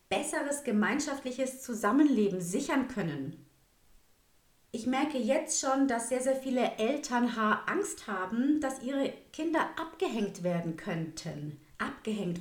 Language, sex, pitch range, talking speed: German, female, 200-265 Hz, 110 wpm